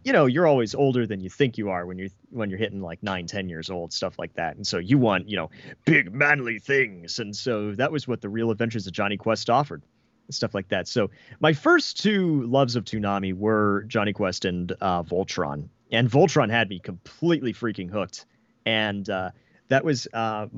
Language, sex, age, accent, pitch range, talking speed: English, male, 30-49, American, 100-125 Hz, 215 wpm